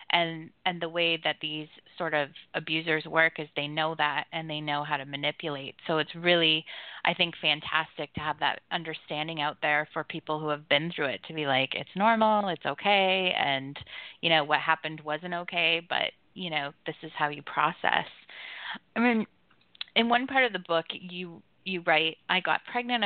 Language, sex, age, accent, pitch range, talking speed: English, female, 20-39, American, 150-175 Hz, 195 wpm